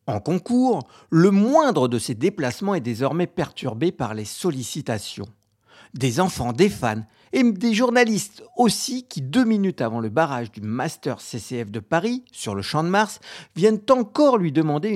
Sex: male